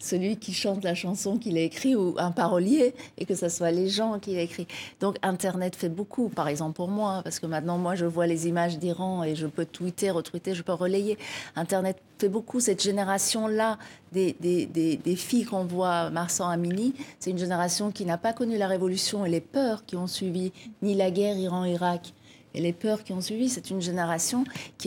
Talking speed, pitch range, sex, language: 210 wpm, 175-205 Hz, female, French